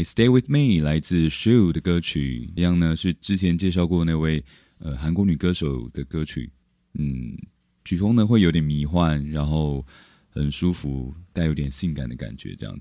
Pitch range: 75-100 Hz